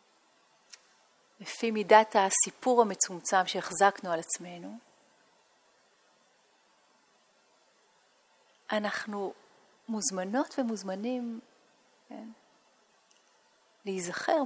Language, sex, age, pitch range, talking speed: Hebrew, female, 40-59, 190-255 Hz, 50 wpm